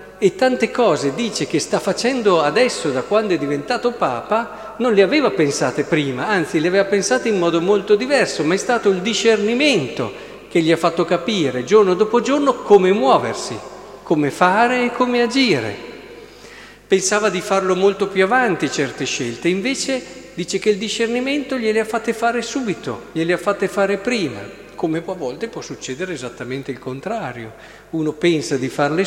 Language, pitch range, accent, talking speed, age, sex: Italian, 165-225 Hz, native, 165 wpm, 50-69, male